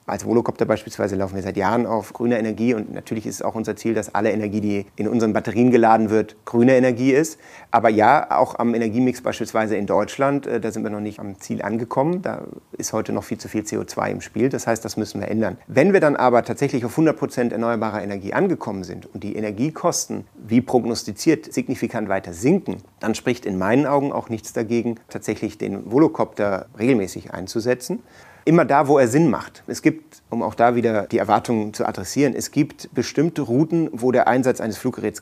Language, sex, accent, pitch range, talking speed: German, male, German, 110-125 Hz, 200 wpm